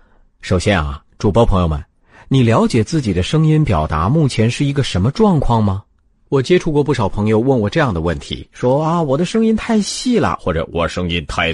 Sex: male